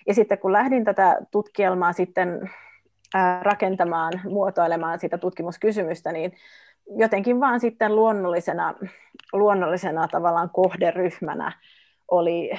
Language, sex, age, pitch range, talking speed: Finnish, female, 30-49, 180-220 Hz, 95 wpm